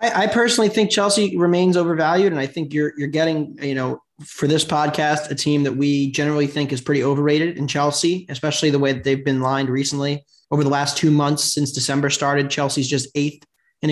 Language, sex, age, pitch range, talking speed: English, male, 20-39, 140-175 Hz, 205 wpm